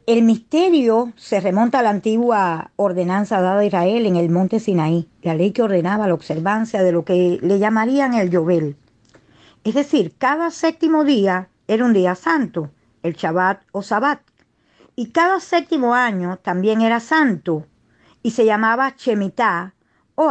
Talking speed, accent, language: 155 wpm, American, English